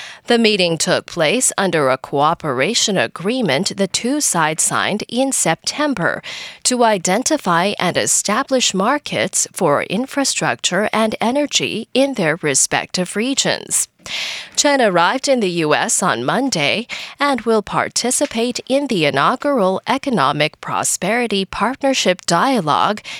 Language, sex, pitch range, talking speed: English, female, 180-265 Hz, 115 wpm